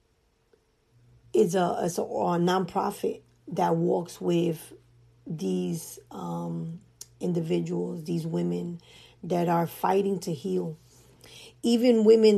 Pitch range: 120-190 Hz